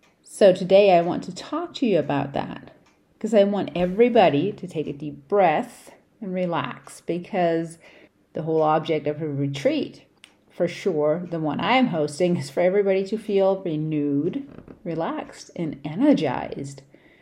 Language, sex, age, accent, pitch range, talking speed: English, female, 40-59, American, 150-190 Hz, 150 wpm